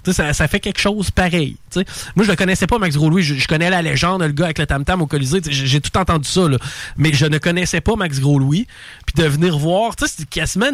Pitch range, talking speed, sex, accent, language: 135-180 Hz, 245 wpm, male, Canadian, French